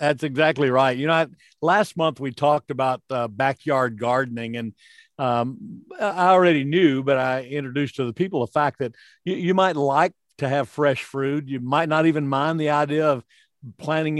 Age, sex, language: 50-69, male, English